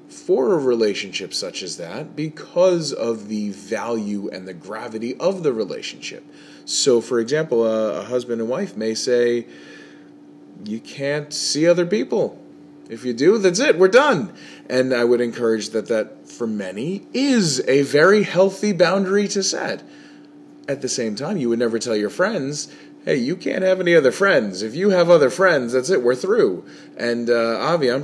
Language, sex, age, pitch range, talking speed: English, male, 20-39, 115-190 Hz, 180 wpm